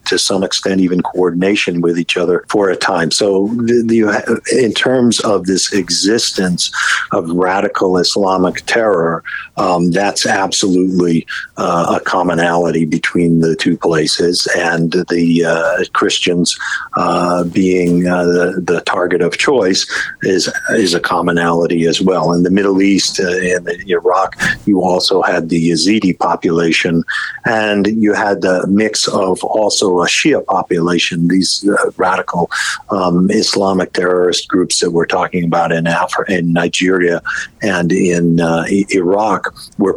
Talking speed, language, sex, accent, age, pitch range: 140 wpm, English, male, American, 50-69, 85-95 Hz